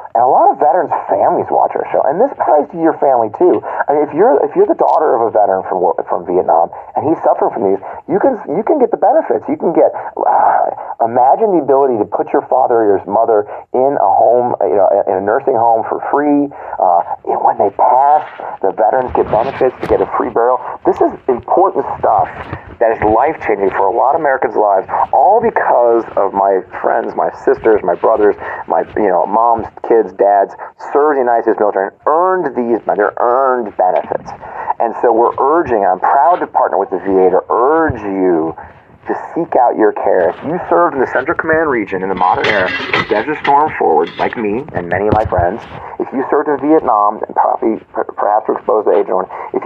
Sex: male